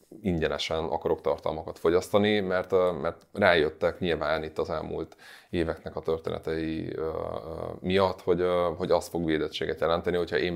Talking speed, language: 130 wpm, Hungarian